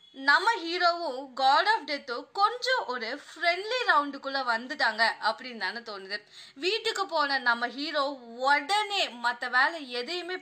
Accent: native